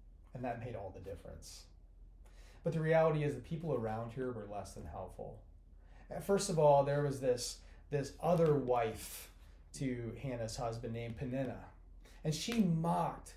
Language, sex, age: English, male, 30-49